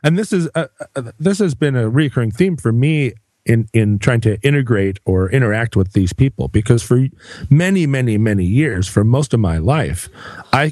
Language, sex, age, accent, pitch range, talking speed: English, male, 40-59, American, 105-135 Hz, 195 wpm